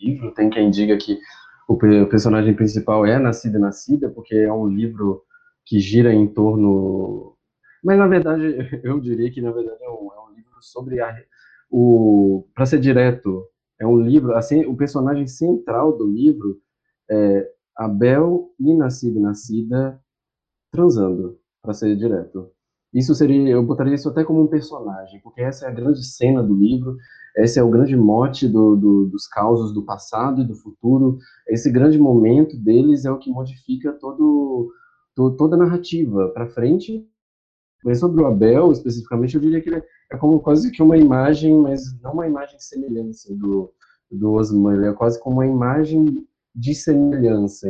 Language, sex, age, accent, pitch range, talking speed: Portuguese, male, 20-39, Brazilian, 110-145 Hz, 170 wpm